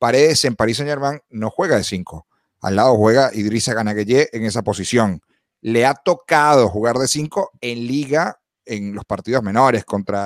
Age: 40-59